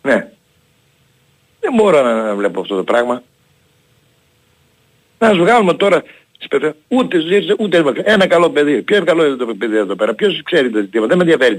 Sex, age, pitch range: male, 60-79, 115-190 Hz